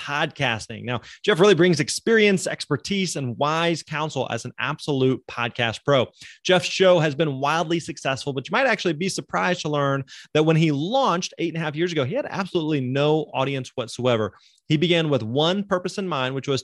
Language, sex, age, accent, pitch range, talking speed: English, male, 30-49, American, 135-170 Hz, 195 wpm